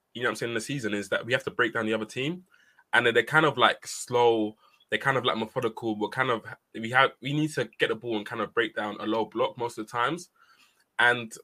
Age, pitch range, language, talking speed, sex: 20-39, 105-140 Hz, English, 280 wpm, male